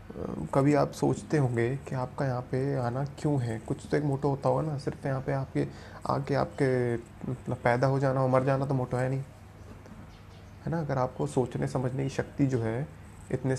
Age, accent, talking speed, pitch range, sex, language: 30-49, native, 200 wpm, 115-140 Hz, male, Hindi